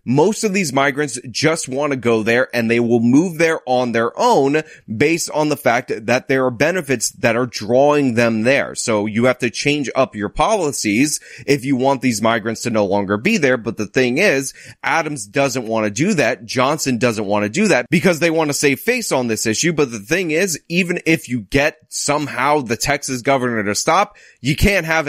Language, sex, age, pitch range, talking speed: English, male, 30-49, 120-150 Hz, 215 wpm